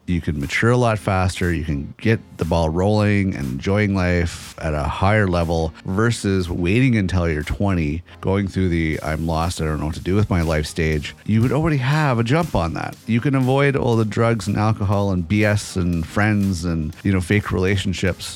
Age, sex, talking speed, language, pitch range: 30-49, male, 210 wpm, English, 85-115 Hz